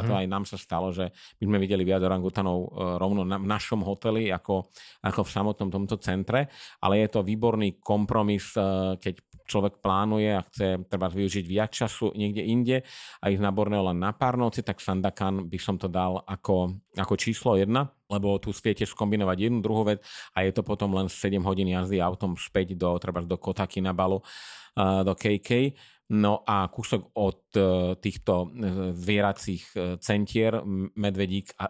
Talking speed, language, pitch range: 170 wpm, Slovak, 95-105 Hz